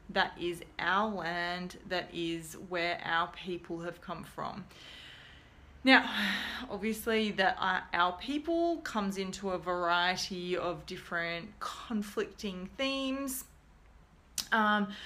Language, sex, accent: English, female, Australian